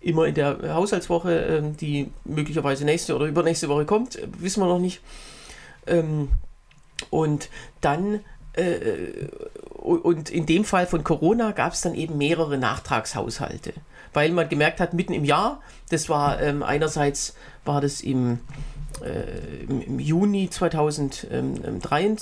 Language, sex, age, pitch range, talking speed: German, female, 40-59, 145-180 Hz, 120 wpm